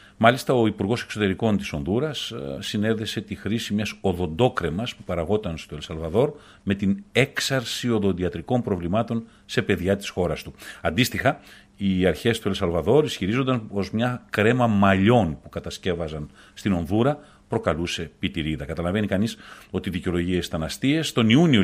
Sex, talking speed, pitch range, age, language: male, 140 wpm, 90-115 Hz, 40-59, Greek